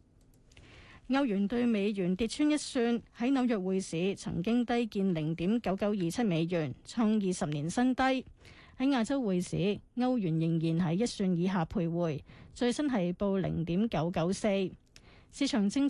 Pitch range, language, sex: 180-245 Hz, Chinese, female